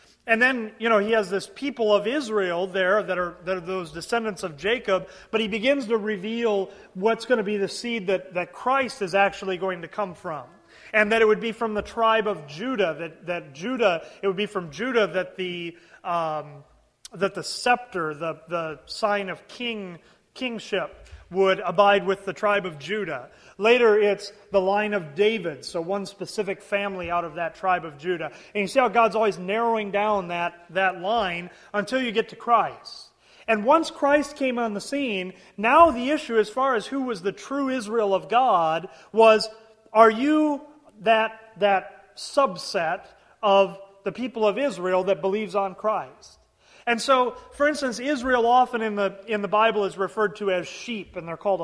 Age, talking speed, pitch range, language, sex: 30-49, 185 wpm, 190-230 Hz, English, male